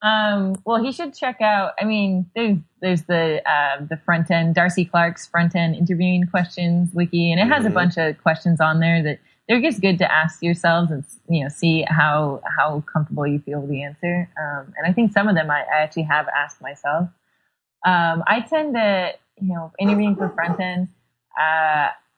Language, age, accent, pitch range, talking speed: English, 20-39, American, 155-190 Hz, 200 wpm